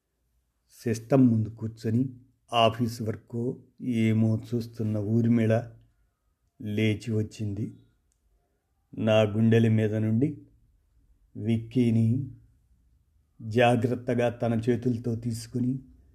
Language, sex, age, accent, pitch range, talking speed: Telugu, male, 50-69, native, 110-125 Hz, 70 wpm